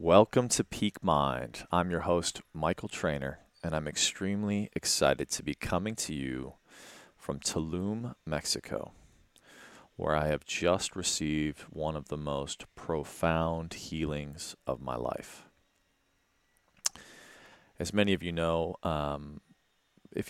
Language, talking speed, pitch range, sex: English, 125 wpm, 75-90 Hz, male